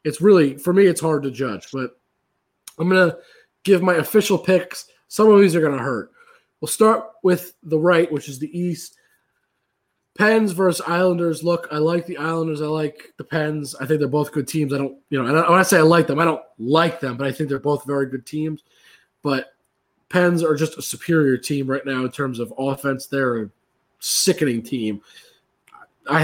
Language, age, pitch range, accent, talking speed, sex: English, 20-39, 135-175 Hz, American, 210 wpm, male